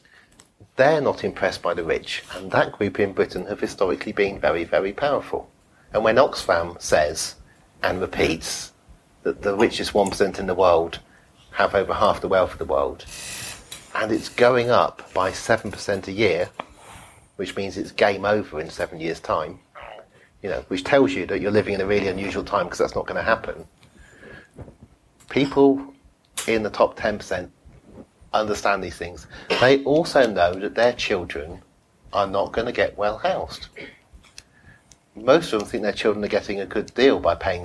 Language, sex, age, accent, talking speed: English, male, 40-59, British, 170 wpm